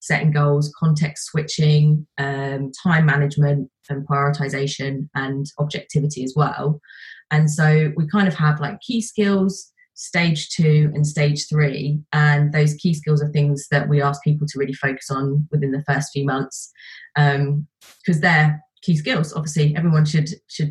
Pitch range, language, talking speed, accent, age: 145-160 Hz, English, 160 wpm, British, 20-39